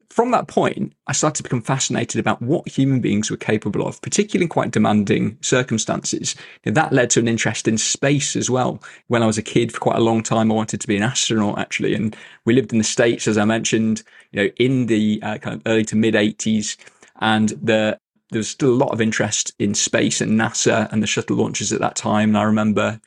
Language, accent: English, British